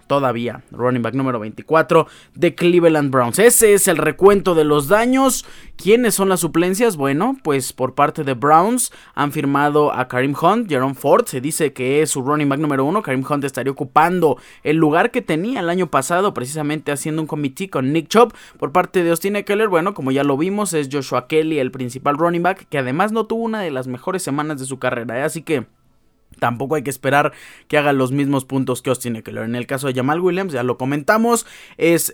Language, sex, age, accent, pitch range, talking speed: Spanish, male, 20-39, Mexican, 135-175 Hz, 210 wpm